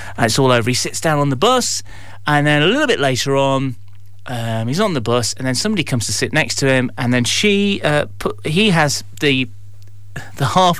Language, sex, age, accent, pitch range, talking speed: English, male, 30-49, British, 105-170 Hz, 230 wpm